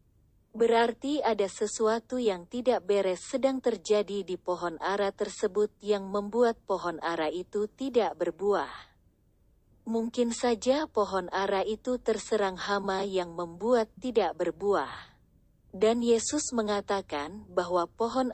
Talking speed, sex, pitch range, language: 115 wpm, female, 180-230 Hz, Indonesian